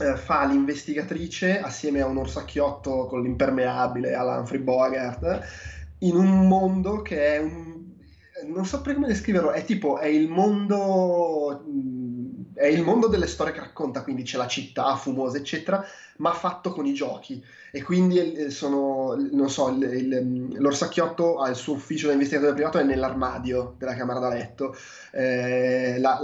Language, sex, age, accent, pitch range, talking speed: Italian, male, 20-39, native, 130-160 Hz, 155 wpm